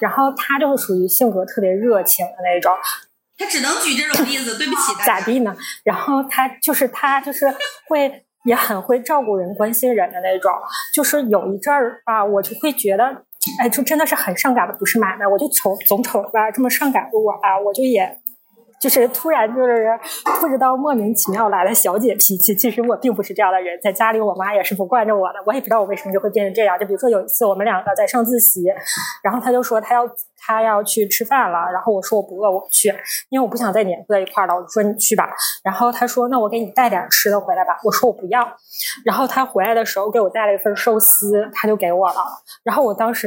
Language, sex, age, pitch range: Chinese, female, 20-39, 195-255 Hz